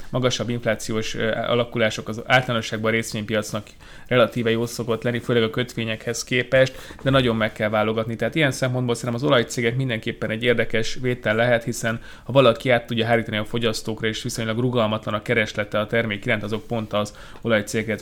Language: Hungarian